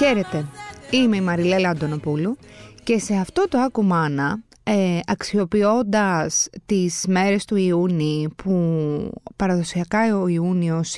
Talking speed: 105 wpm